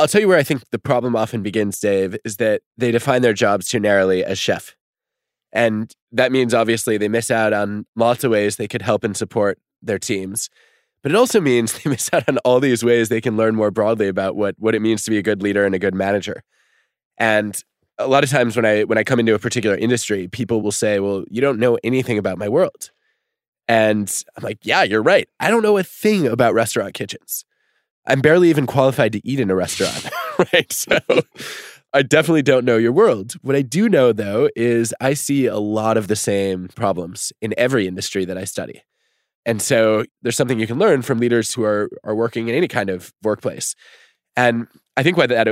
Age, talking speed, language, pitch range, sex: 20-39, 220 wpm, English, 105-125 Hz, male